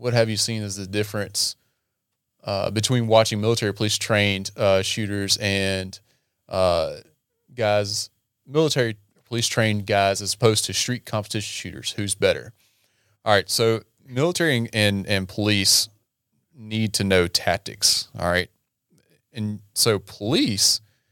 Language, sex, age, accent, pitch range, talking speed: English, male, 30-49, American, 95-115 Hz, 120 wpm